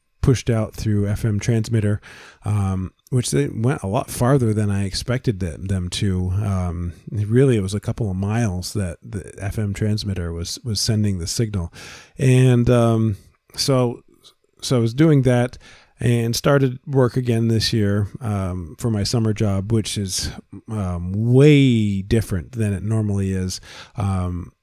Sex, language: male, English